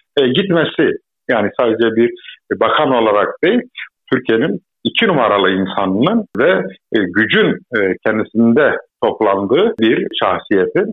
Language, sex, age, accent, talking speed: Turkish, male, 50-69, native, 95 wpm